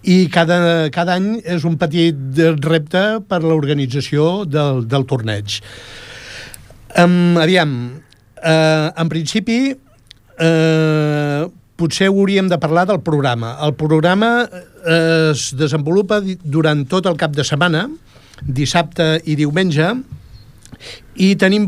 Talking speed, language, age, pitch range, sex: 115 wpm, Italian, 60-79, 145-175 Hz, male